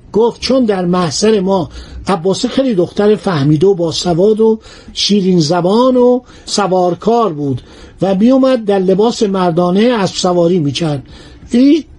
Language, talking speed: Persian, 135 wpm